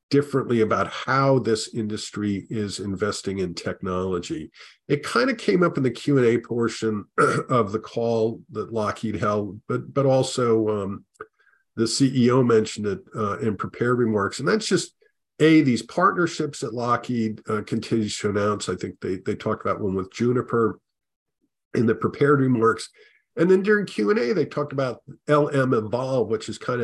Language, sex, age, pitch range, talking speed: English, male, 50-69, 105-140 Hz, 165 wpm